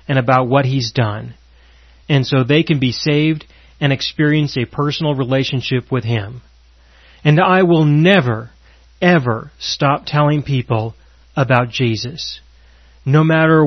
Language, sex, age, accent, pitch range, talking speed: English, male, 40-59, American, 115-165 Hz, 130 wpm